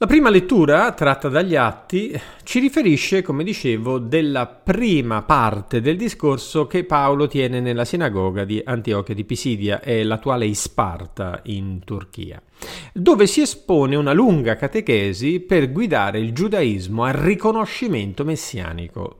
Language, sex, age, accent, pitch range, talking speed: Italian, male, 40-59, native, 100-150 Hz, 130 wpm